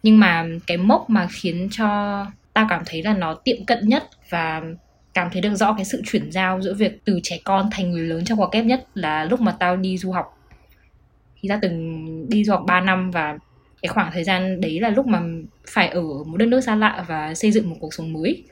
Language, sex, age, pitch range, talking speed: Vietnamese, female, 10-29, 165-210 Hz, 240 wpm